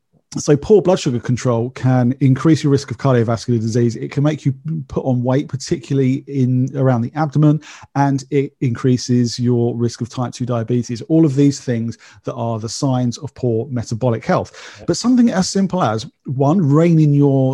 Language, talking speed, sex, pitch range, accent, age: English, 180 wpm, male, 120-150 Hz, British, 40-59